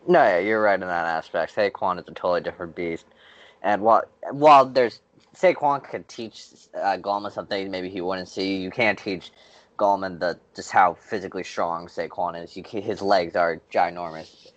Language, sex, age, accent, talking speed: English, male, 20-39, American, 180 wpm